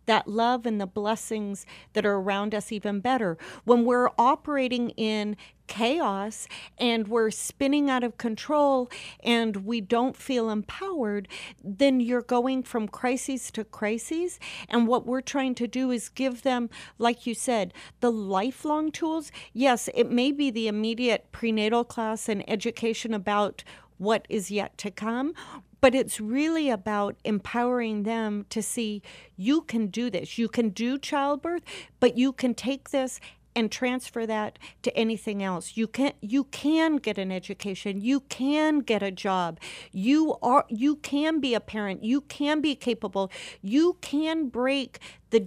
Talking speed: 155 wpm